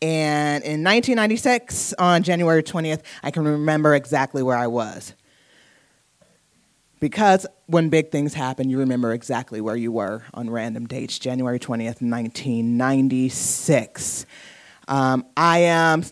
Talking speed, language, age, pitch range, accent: 125 wpm, English, 20-39, 135-190 Hz, American